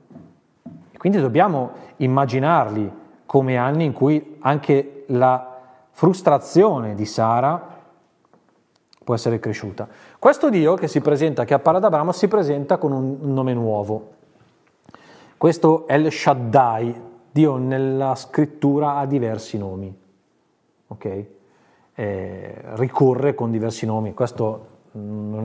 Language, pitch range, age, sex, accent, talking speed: Italian, 110-140 Hz, 30-49, male, native, 115 wpm